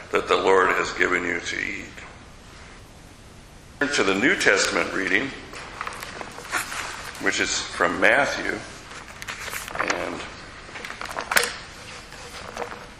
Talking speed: 90 wpm